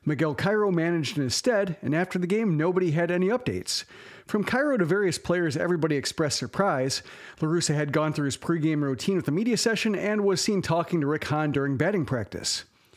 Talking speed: 200 wpm